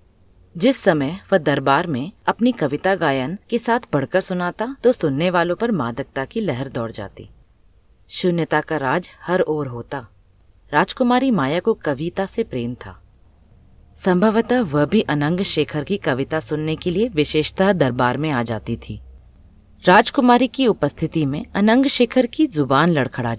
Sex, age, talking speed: female, 30-49, 150 wpm